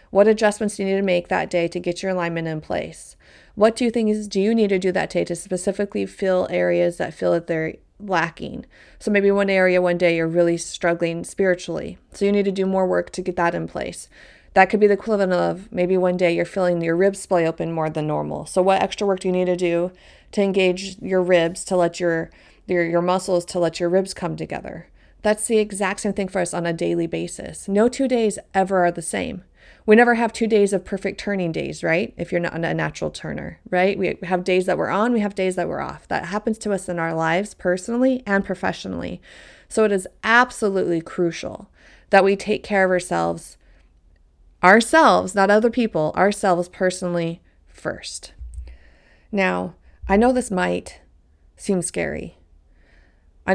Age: 30-49